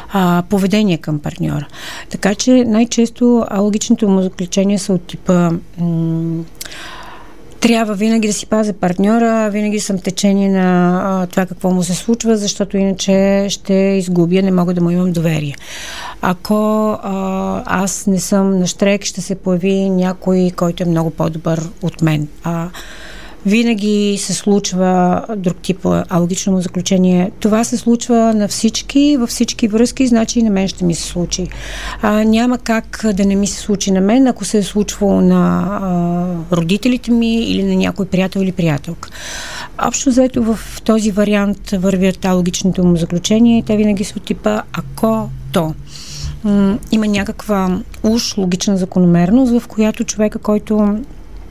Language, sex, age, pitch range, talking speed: Bulgarian, female, 40-59, 180-215 Hz, 150 wpm